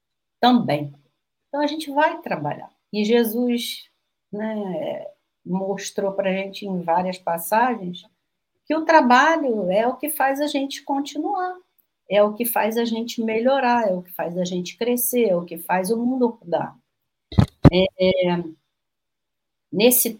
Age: 50-69